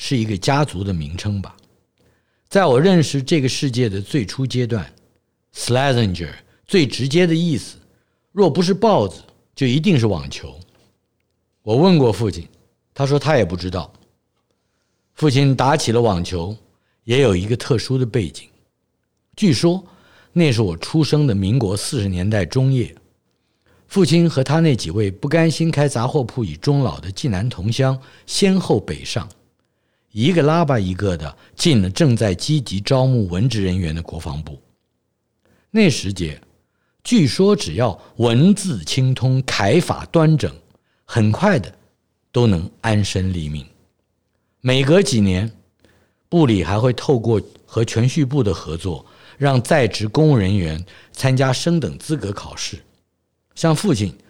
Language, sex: Chinese, male